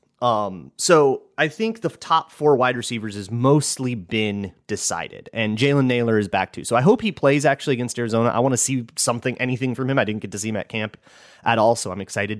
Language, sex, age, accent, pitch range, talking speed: English, male, 30-49, American, 100-125 Hz, 230 wpm